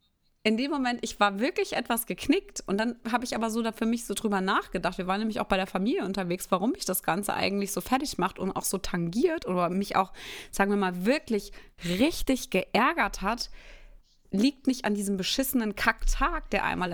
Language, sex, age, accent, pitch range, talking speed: German, female, 30-49, German, 190-230 Hz, 205 wpm